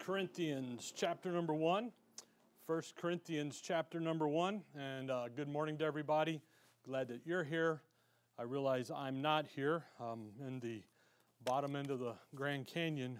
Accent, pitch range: American, 130-165 Hz